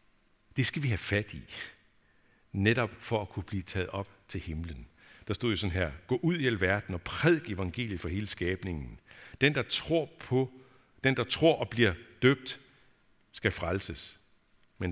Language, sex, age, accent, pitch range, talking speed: Danish, male, 60-79, native, 90-120 Hz, 175 wpm